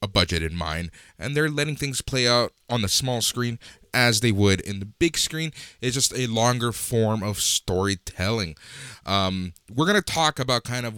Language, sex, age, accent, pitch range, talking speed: English, male, 20-39, American, 100-130 Hz, 190 wpm